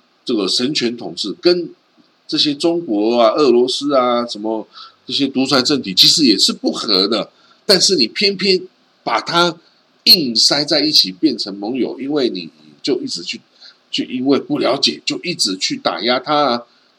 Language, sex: Chinese, male